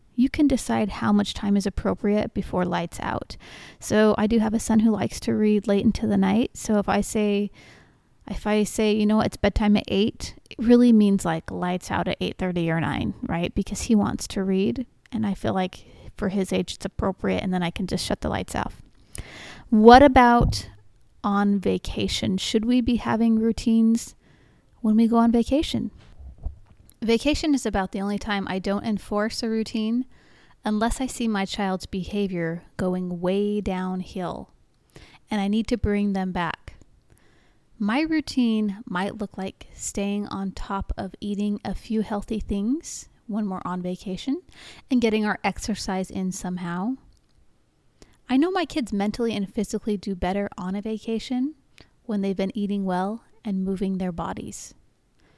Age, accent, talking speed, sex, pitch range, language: 30-49, American, 170 wpm, female, 190-225 Hz, English